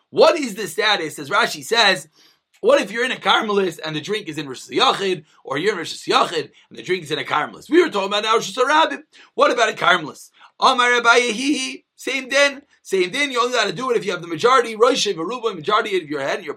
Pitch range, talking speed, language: 200-280 Hz, 230 wpm, English